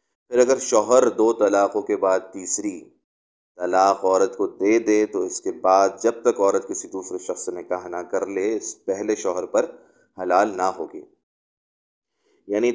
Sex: male